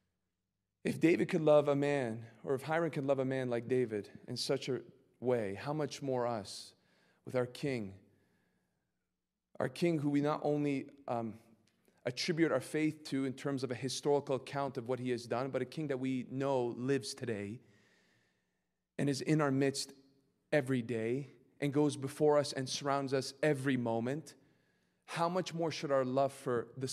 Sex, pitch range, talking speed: male, 120-150 Hz, 180 wpm